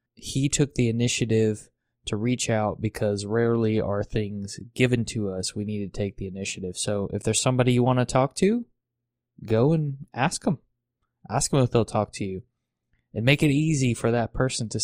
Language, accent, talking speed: English, American, 195 wpm